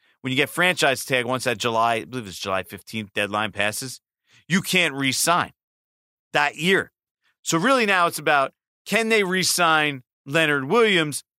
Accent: American